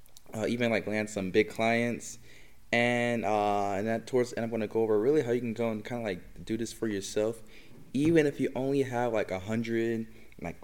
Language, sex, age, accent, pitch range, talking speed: English, male, 20-39, American, 105-120 Hz, 225 wpm